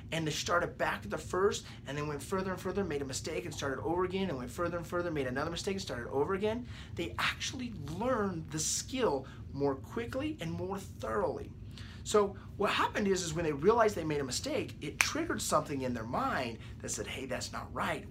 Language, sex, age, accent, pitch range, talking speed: English, male, 30-49, American, 120-175 Hz, 220 wpm